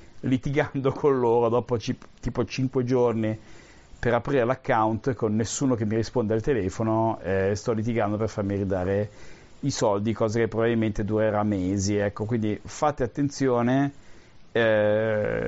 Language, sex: Italian, male